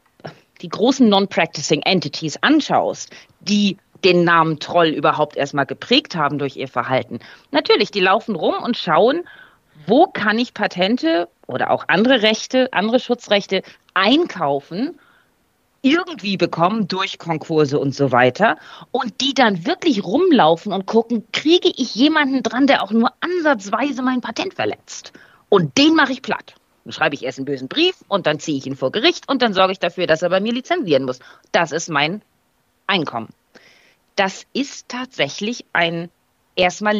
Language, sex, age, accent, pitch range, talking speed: German, female, 40-59, German, 160-255 Hz, 160 wpm